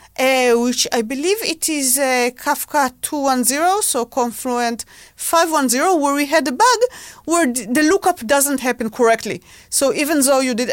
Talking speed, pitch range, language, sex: 155 wpm, 220-305 Hz, English, female